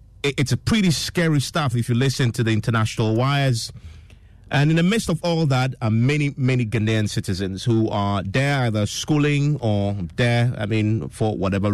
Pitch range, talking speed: 105-140 Hz, 180 wpm